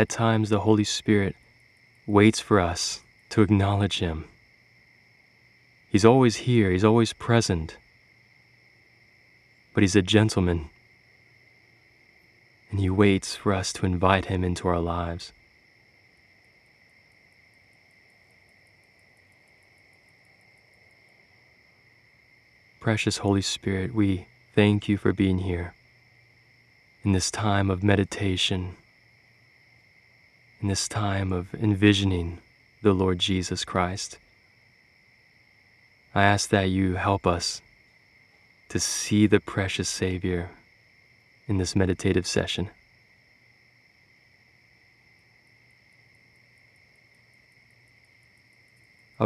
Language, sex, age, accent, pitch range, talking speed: English, male, 20-39, American, 95-120 Hz, 85 wpm